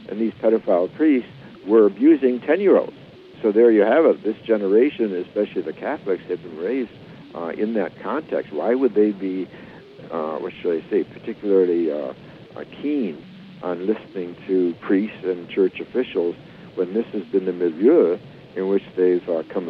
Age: 60-79